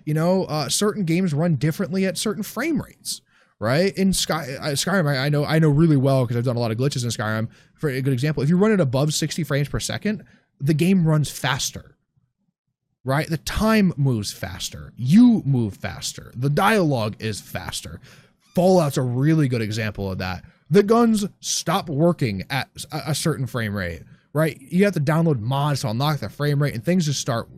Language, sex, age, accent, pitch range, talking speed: English, male, 20-39, American, 130-175 Hz, 200 wpm